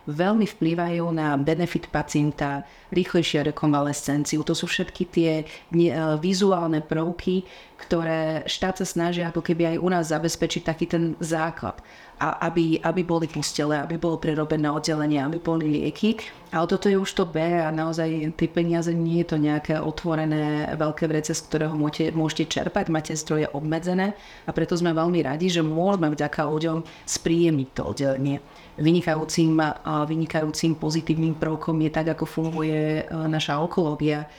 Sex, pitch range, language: female, 150-165 Hz, Slovak